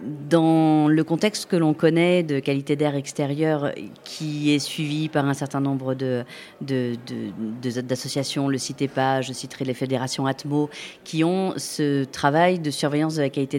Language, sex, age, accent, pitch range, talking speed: French, female, 40-59, French, 135-165 Hz, 170 wpm